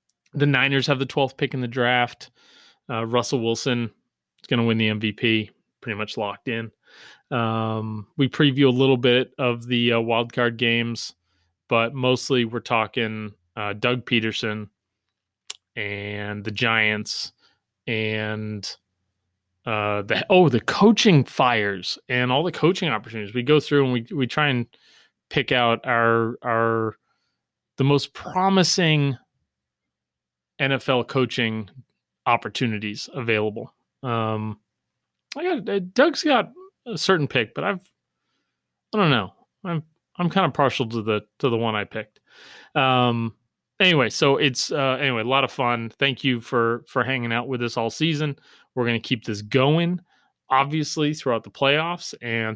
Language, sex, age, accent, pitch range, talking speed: English, male, 30-49, American, 110-140 Hz, 150 wpm